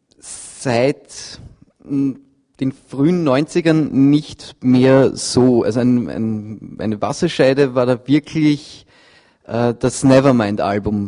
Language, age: German, 30-49